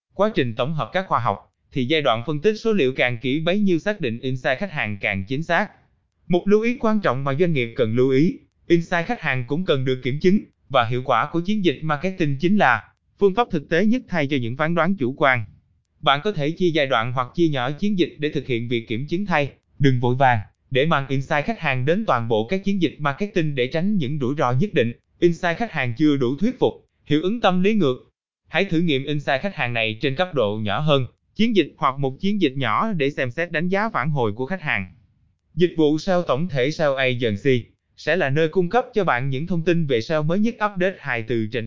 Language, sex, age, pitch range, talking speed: Vietnamese, male, 20-39, 125-180 Hz, 250 wpm